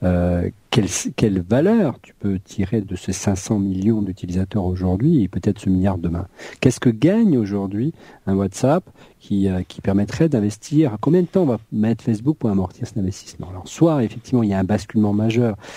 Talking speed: 185 wpm